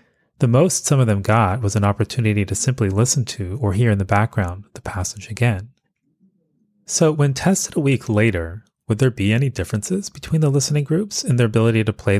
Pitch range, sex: 100-145 Hz, male